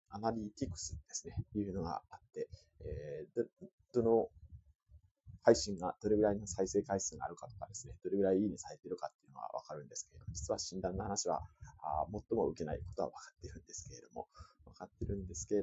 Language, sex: Japanese, male